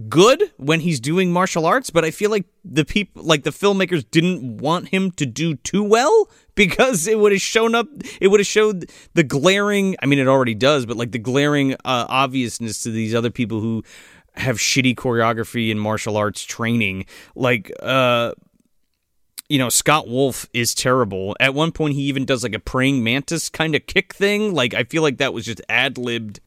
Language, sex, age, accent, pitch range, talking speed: English, male, 30-49, American, 120-185 Hz, 195 wpm